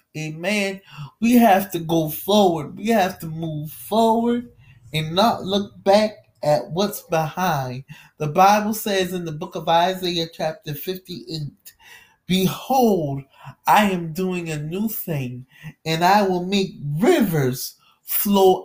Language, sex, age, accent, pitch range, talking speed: English, male, 20-39, American, 155-200 Hz, 130 wpm